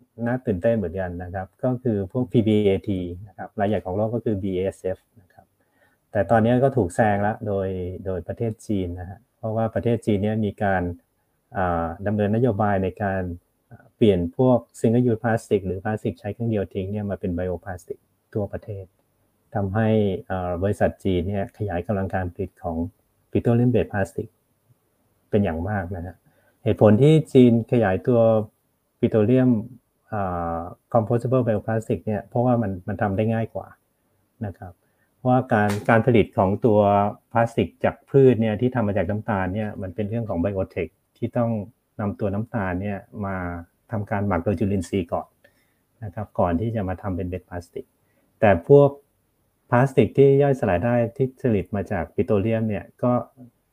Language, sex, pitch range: Thai, male, 95-120 Hz